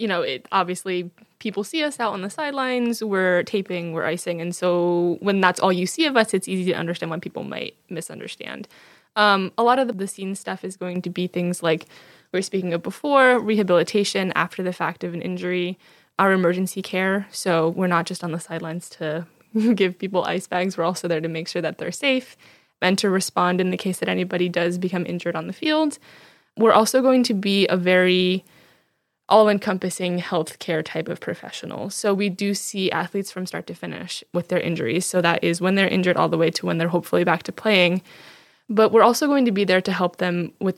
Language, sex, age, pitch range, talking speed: English, female, 10-29, 175-205 Hz, 215 wpm